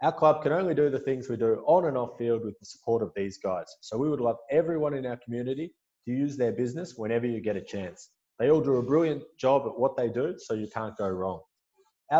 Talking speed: 255 wpm